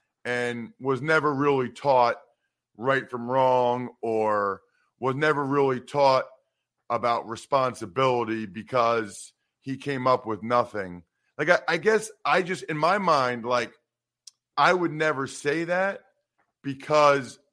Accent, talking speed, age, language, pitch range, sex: American, 125 wpm, 40-59, English, 125-155 Hz, male